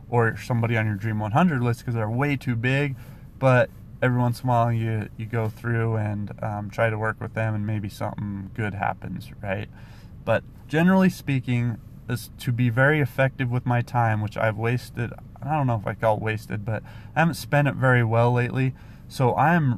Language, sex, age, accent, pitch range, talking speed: English, male, 30-49, American, 110-130 Hz, 200 wpm